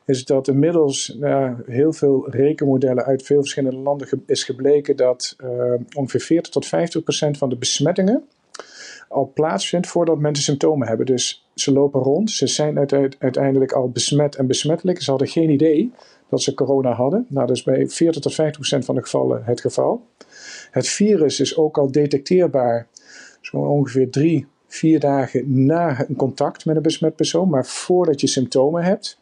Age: 50-69